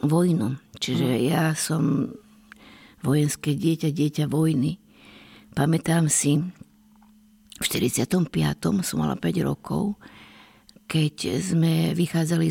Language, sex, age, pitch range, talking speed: Slovak, female, 50-69, 135-175 Hz, 90 wpm